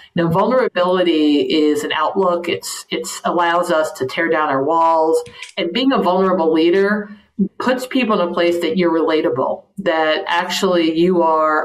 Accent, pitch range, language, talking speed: American, 155-180 Hz, English, 160 wpm